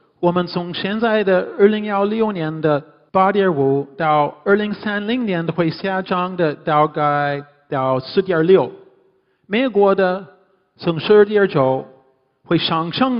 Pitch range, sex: 160-210 Hz, male